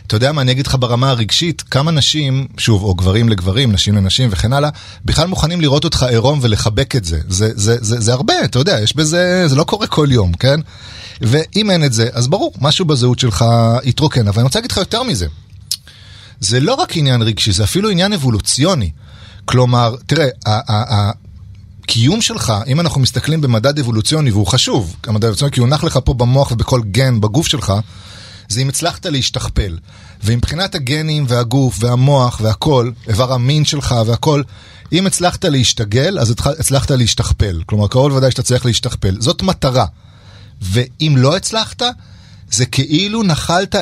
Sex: male